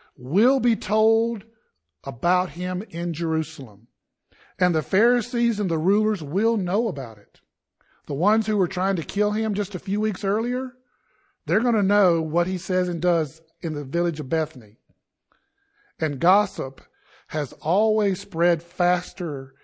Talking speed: 155 wpm